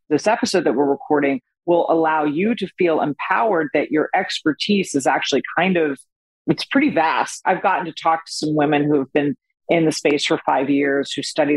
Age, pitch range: 40-59, 145-190 Hz